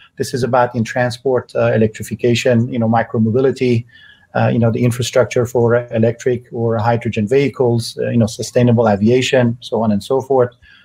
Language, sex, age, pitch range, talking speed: English, male, 30-49, 115-130 Hz, 165 wpm